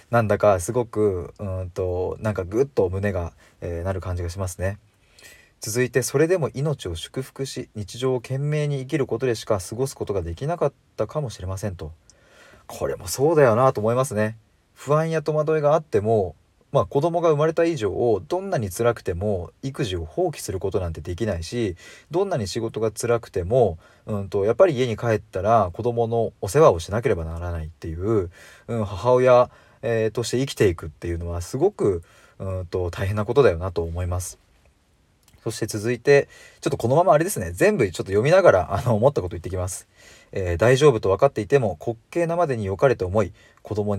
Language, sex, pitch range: Japanese, male, 95-125 Hz